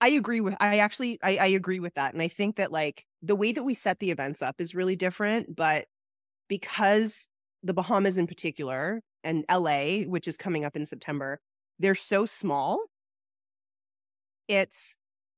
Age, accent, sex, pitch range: 30-49, American, female, 145-195 Hz